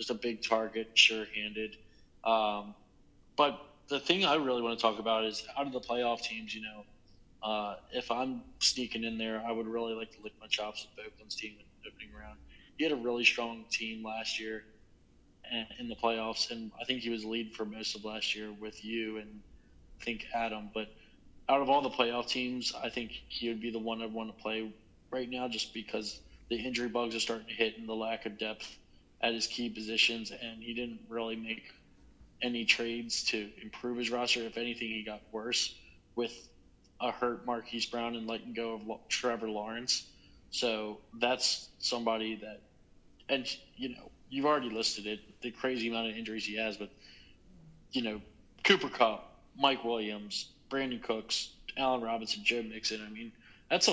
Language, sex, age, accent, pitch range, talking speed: English, male, 20-39, American, 105-120 Hz, 190 wpm